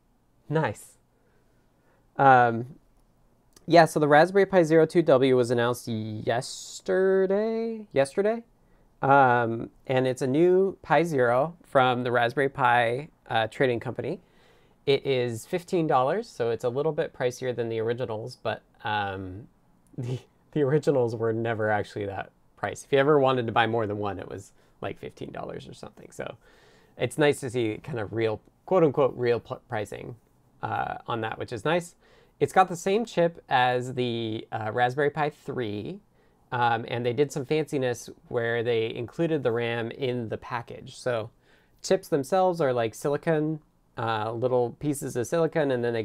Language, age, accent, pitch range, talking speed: English, 20-39, American, 115-150 Hz, 155 wpm